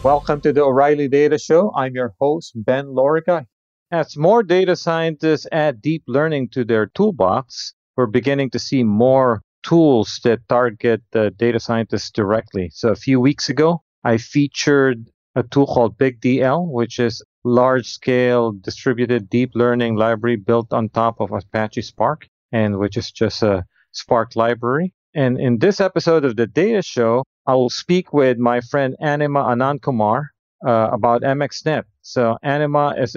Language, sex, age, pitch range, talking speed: English, male, 40-59, 120-150 Hz, 155 wpm